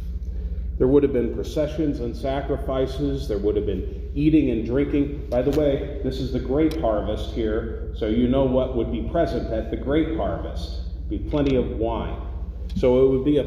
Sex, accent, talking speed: male, American, 190 wpm